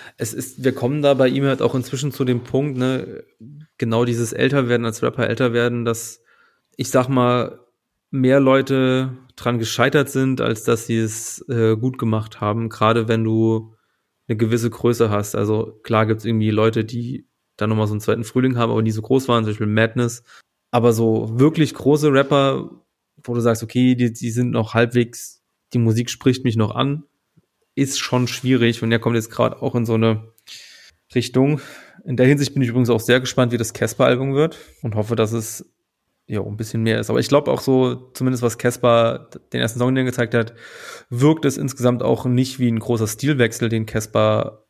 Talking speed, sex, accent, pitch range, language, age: 200 wpm, male, German, 115-130 Hz, German, 30-49